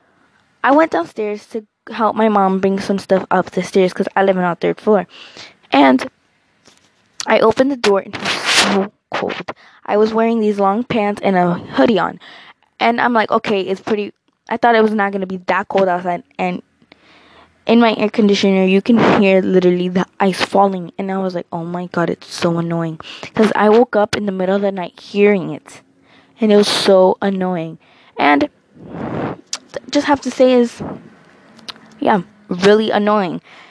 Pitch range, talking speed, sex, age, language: 190-220 Hz, 185 wpm, female, 20-39, English